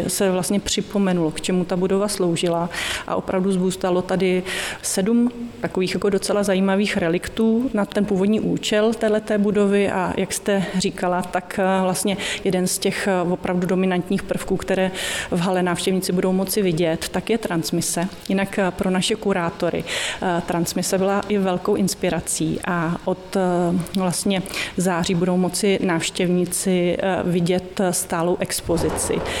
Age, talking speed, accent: 30-49, 135 wpm, native